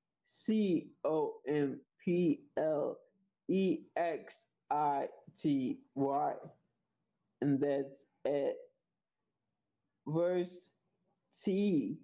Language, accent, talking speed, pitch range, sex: English, American, 70 wpm, 150-215 Hz, male